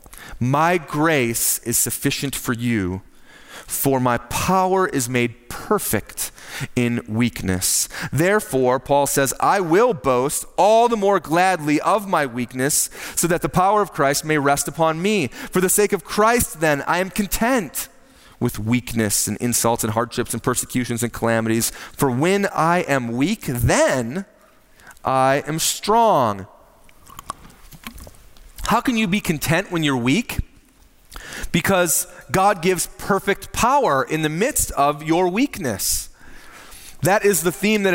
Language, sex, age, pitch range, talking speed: English, male, 30-49, 135-190 Hz, 140 wpm